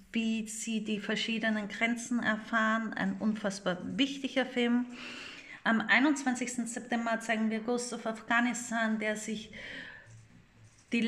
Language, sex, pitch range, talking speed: German, female, 215-245 Hz, 115 wpm